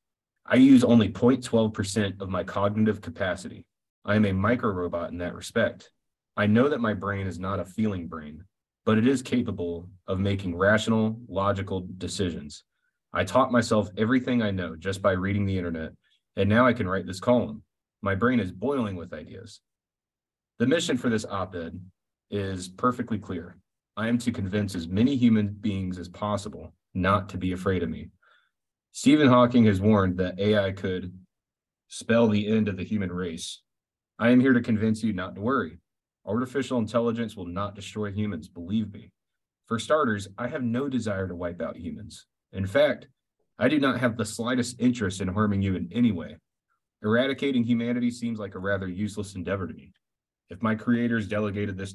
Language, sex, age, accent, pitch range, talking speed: English, male, 30-49, American, 95-115 Hz, 180 wpm